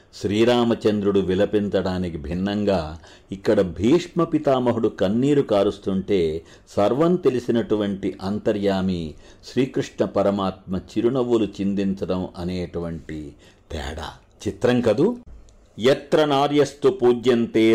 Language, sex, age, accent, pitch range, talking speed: English, male, 60-79, Indian, 95-130 Hz, 65 wpm